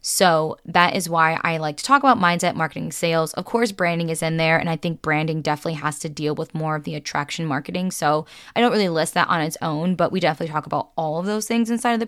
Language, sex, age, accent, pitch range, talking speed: English, female, 10-29, American, 160-190 Hz, 265 wpm